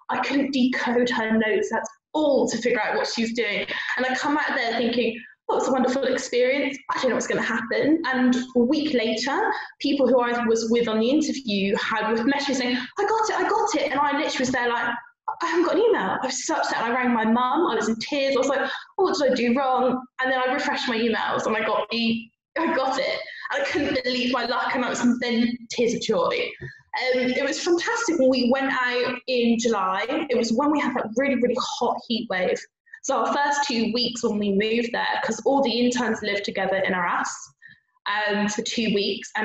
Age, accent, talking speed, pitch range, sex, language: 10-29, British, 235 wpm, 225-275 Hz, female, English